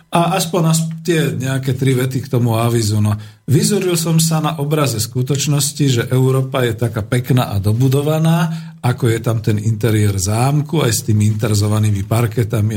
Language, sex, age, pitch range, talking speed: Slovak, male, 50-69, 115-155 Hz, 160 wpm